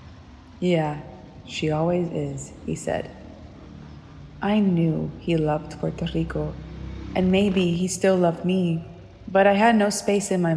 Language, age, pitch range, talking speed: Spanish, 20-39, 155-190 Hz, 140 wpm